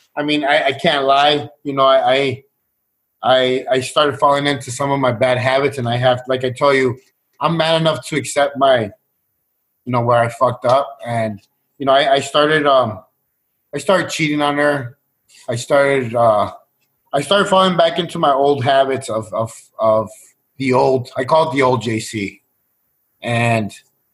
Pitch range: 115-140 Hz